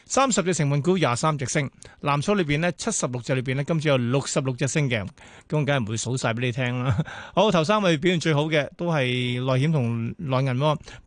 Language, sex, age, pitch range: Chinese, male, 20-39, 130-175 Hz